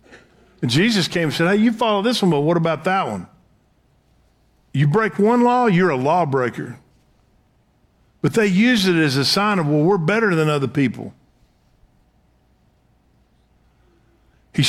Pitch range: 120-185 Hz